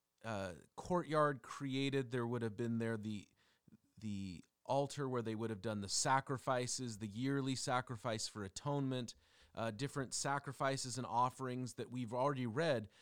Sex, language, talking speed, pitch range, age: male, English, 145 wpm, 115-160 Hz, 30-49